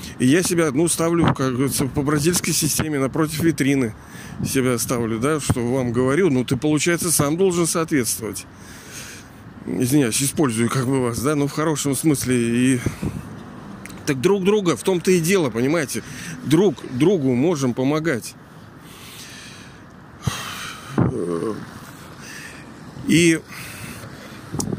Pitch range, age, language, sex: 125-160 Hz, 40-59, Russian, male